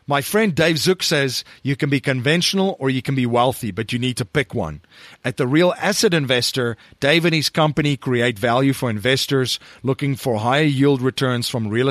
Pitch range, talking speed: 125-155 Hz, 200 wpm